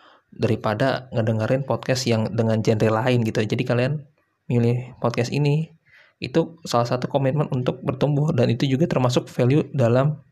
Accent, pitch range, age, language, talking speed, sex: native, 115-135 Hz, 20-39, Indonesian, 145 wpm, male